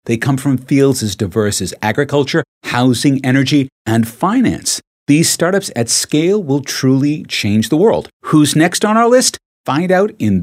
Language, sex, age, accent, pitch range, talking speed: English, male, 50-69, American, 105-140 Hz, 165 wpm